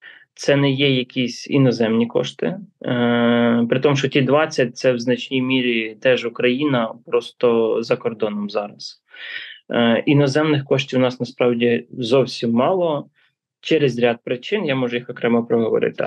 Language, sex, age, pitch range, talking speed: Russian, male, 20-39, 120-145 Hz, 140 wpm